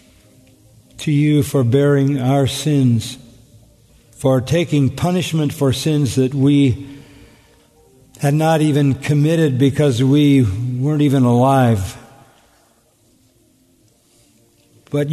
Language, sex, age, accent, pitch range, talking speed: English, male, 50-69, American, 115-145 Hz, 90 wpm